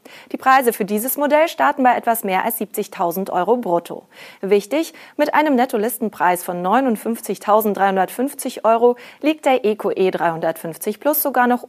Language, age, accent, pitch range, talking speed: German, 30-49, German, 185-260 Hz, 140 wpm